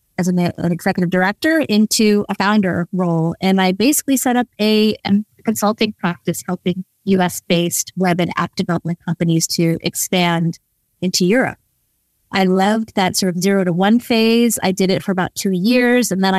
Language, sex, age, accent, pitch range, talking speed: English, female, 30-49, American, 180-205 Hz, 165 wpm